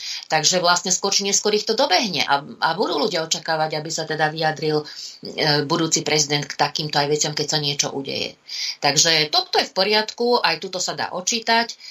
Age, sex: 30-49, female